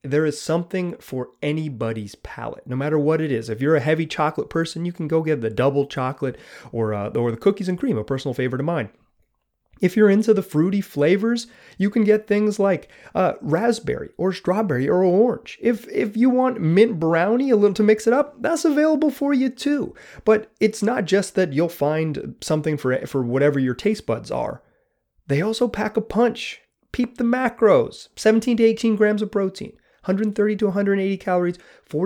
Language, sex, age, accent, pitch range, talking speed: English, male, 30-49, American, 150-220 Hz, 195 wpm